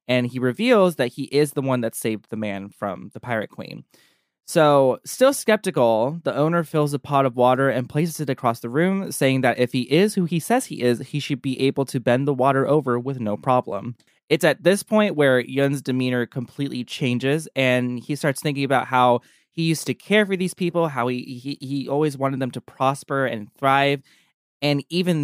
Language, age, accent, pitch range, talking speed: English, 20-39, American, 125-150 Hz, 210 wpm